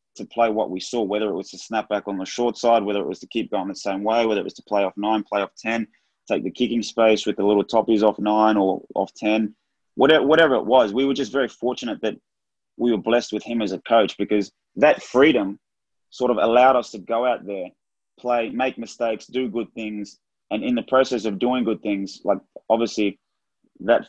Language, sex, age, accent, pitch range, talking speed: English, male, 20-39, Australian, 100-115 Hz, 230 wpm